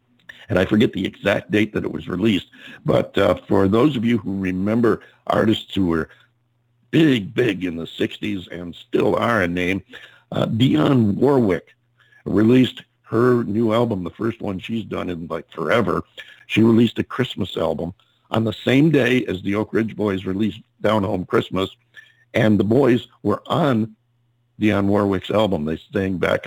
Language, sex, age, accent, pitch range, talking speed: English, male, 50-69, American, 95-115 Hz, 170 wpm